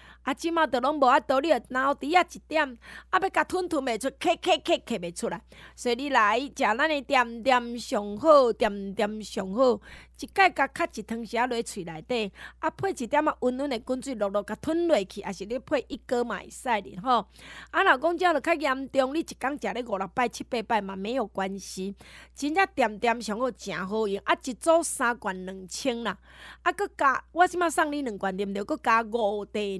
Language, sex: Chinese, female